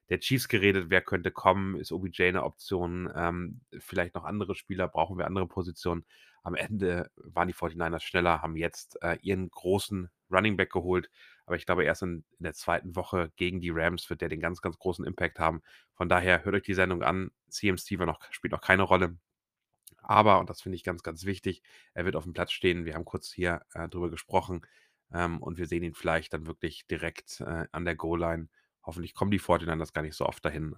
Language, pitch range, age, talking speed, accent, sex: German, 85-95 Hz, 30-49, 215 wpm, German, male